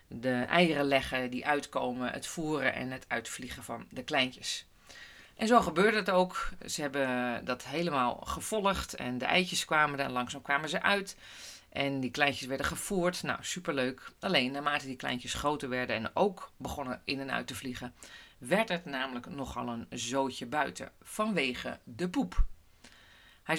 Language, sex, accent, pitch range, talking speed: Dutch, female, Dutch, 130-175 Hz, 165 wpm